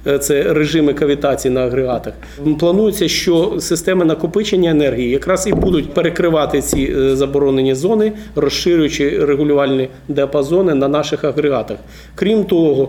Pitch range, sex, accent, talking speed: 140-170 Hz, male, native, 115 wpm